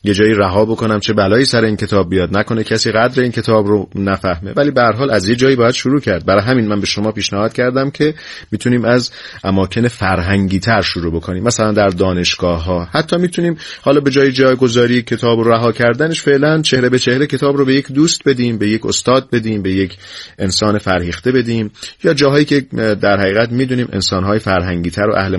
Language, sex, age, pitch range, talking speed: Persian, male, 30-49, 95-120 Hz, 205 wpm